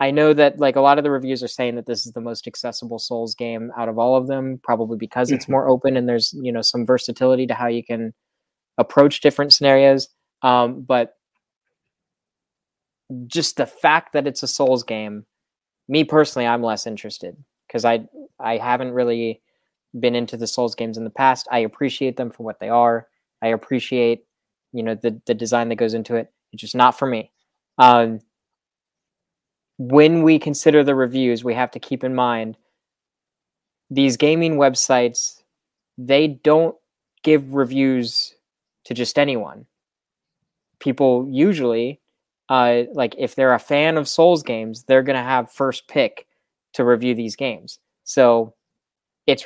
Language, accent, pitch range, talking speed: English, American, 120-140 Hz, 165 wpm